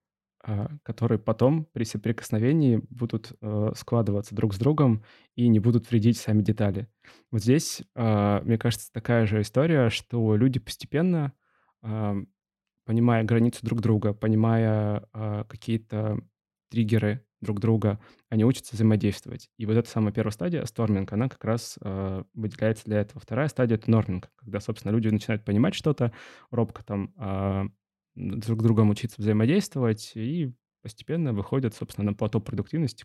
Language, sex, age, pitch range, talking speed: Russian, male, 20-39, 105-120 Hz, 135 wpm